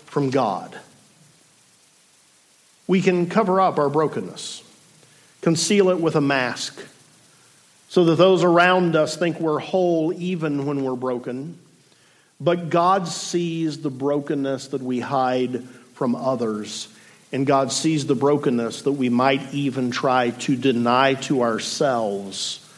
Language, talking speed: English, 130 wpm